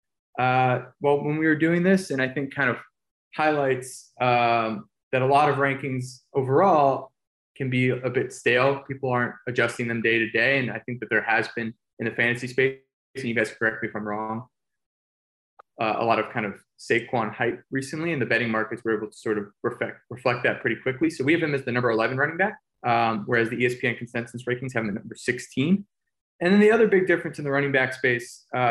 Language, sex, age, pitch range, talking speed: English, male, 20-39, 115-140 Hz, 220 wpm